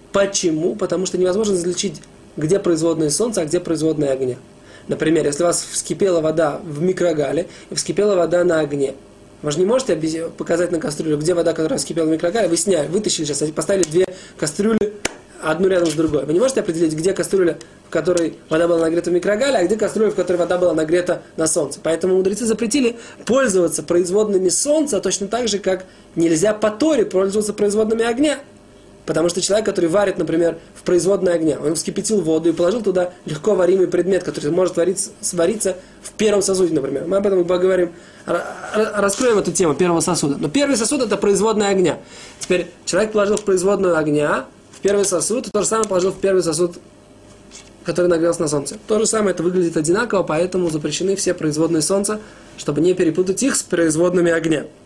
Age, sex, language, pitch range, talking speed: 20-39, male, Russian, 165-200 Hz, 185 wpm